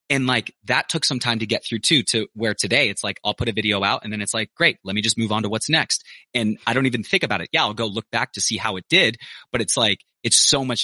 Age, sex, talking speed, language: 30-49, male, 310 wpm, English